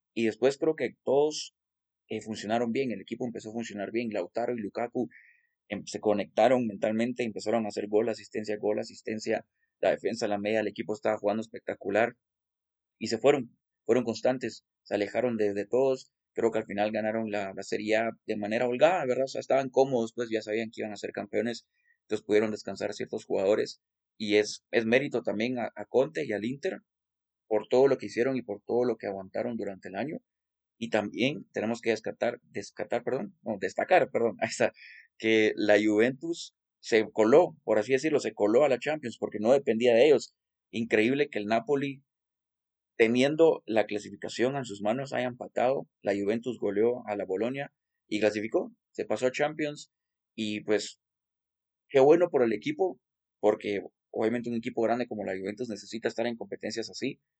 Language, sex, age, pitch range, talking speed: Spanish, male, 30-49, 105-125 Hz, 180 wpm